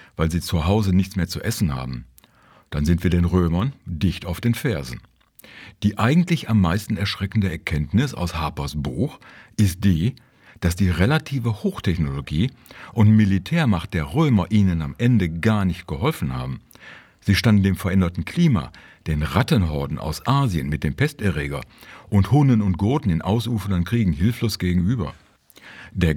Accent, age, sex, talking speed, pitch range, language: German, 50-69, male, 150 wpm, 80-110 Hz, German